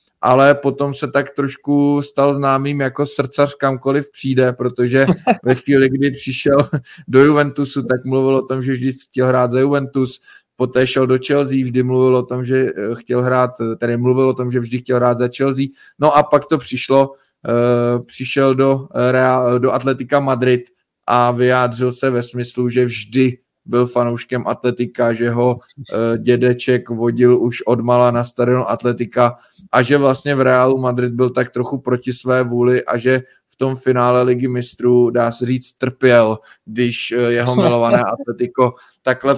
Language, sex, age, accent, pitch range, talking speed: Czech, male, 20-39, native, 120-130 Hz, 160 wpm